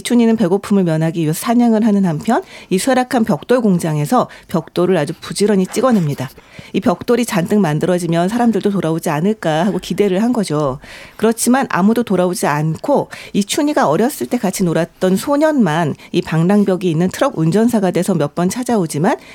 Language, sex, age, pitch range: Korean, female, 40-59, 175-230 Hz